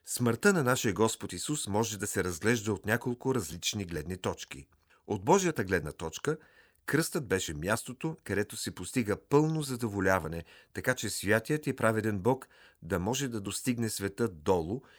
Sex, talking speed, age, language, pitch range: male, 155 wpm, 40-59, Bulgarian, 95-130 Hz